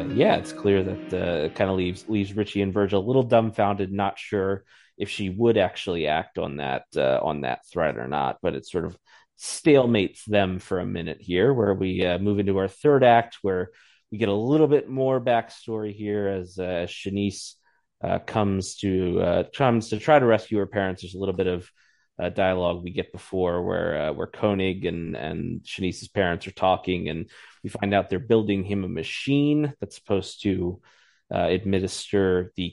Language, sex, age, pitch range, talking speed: English, male, 30-49, 90-110 Hz, 195 wpm